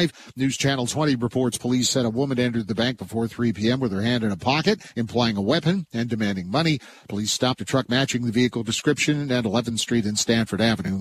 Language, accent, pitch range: English, American, 115-145 Hz